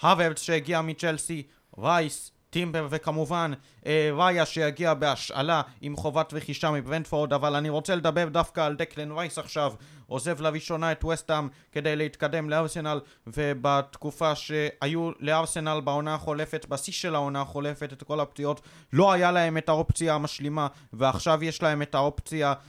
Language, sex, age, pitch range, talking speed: Hebrew, male, 20-39, 140-160 Hz, 140 wpm